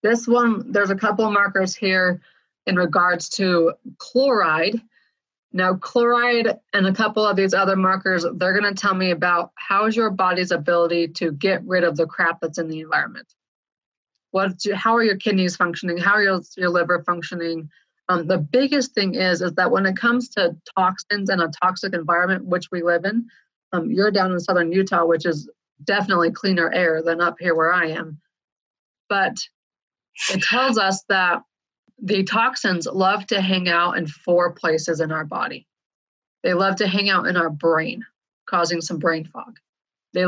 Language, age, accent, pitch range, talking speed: English, 30-49, American, 170-200 Hz, 180 wpm